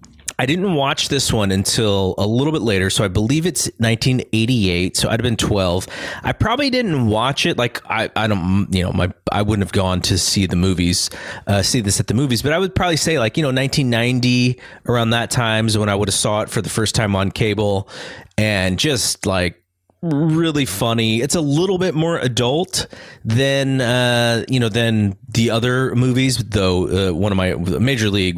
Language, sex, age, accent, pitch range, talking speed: English, male, 30-49, American, 100-130 Hz, 205 wpm